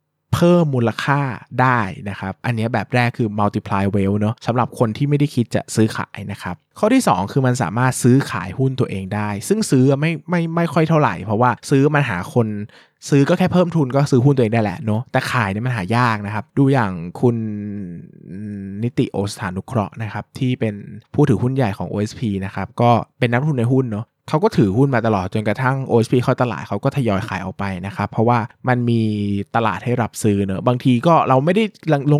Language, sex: Thai, male